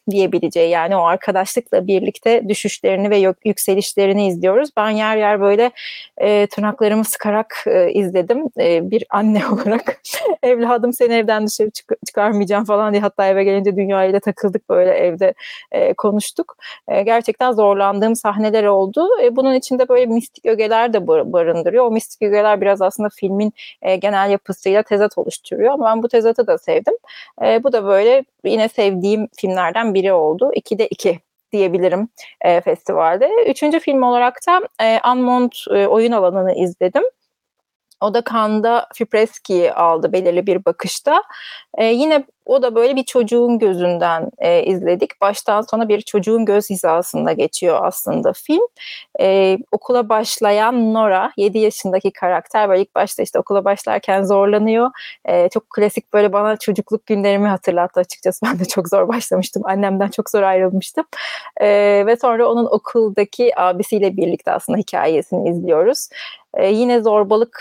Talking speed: 145 wpm